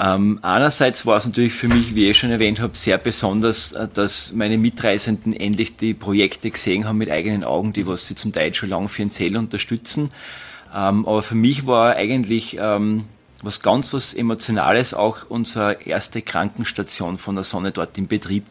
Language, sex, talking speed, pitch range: German, male, 180 wpm, 100-120 Hz